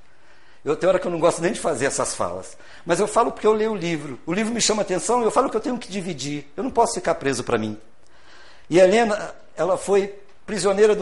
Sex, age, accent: male, 60-79, Brazilian